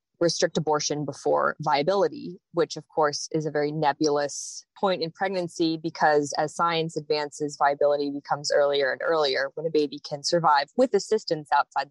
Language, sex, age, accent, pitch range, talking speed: English, female, 20-39, American, 150-185 Hz, 155 wpm